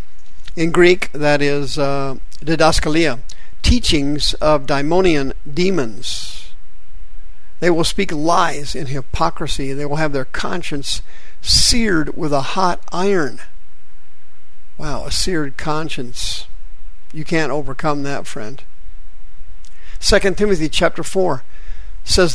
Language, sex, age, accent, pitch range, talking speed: English, male, 50-69, American, 130-170 Hz, 105 wpm